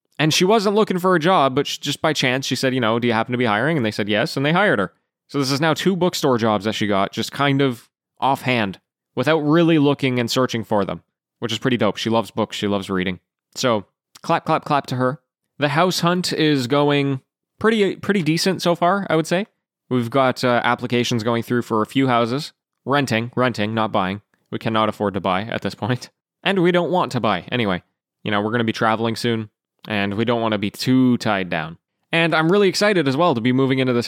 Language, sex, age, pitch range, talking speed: English, male, 20-39, 115-150 Hz, 240 wpm